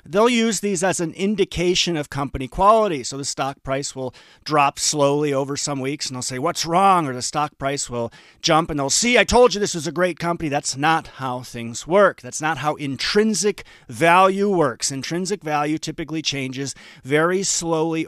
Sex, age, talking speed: male, 40-59, 195 wpm